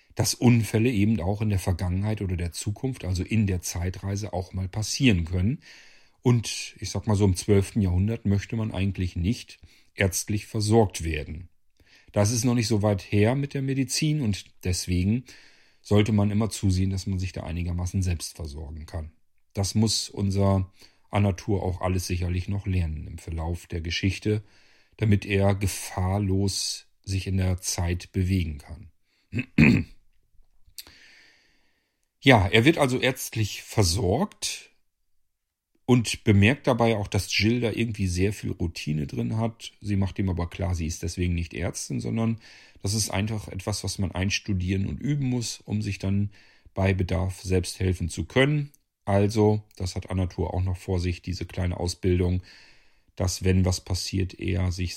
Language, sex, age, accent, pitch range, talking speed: German, male, 40-59, German, 90-105 Hz, 160 wpm